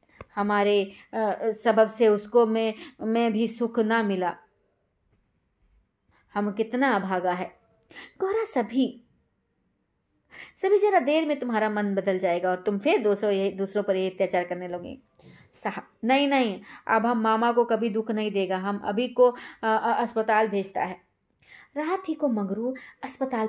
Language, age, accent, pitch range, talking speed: Hindi, 20-39, native, 195-280 Hz, 140 wpm